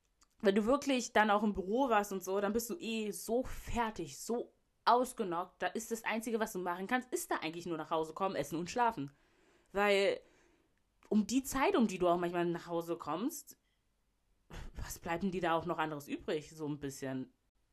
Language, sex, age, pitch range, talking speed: German, female, 20-39, 165-245 Hz, 205 wpm